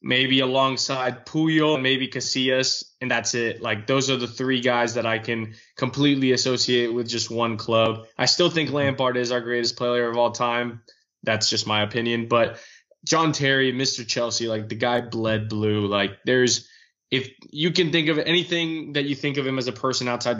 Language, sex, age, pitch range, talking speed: English, male, 20-39, 115-135 Hz, 195 wpm